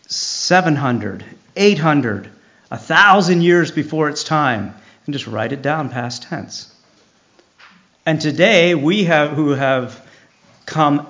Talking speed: 115 wpm